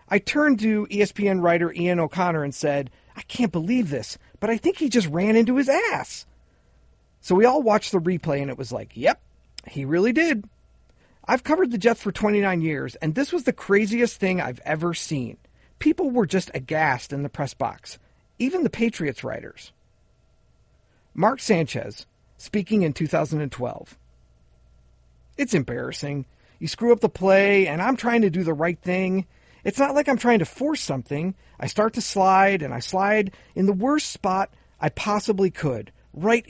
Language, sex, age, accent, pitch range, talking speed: English, male, 40-59, American, 140-220 Hz, 175 wpm